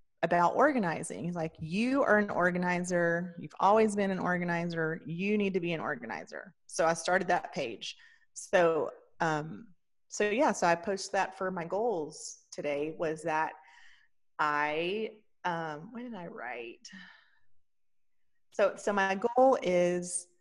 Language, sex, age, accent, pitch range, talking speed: English, female, 30-49, American, 160-200 Hz, 145 wpm